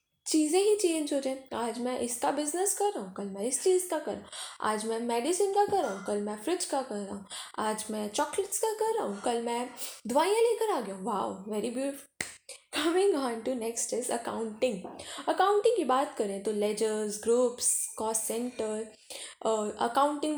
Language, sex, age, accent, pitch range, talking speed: Hindi, female, 10-29, native, 220-340 Hz, 195 wpm